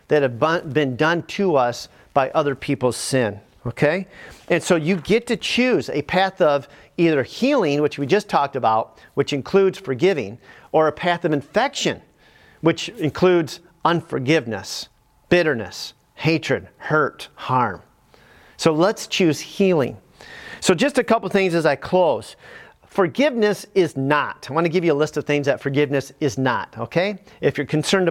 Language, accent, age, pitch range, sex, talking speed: English, American, 40-59, 145-195 Hz, male, 160 wpm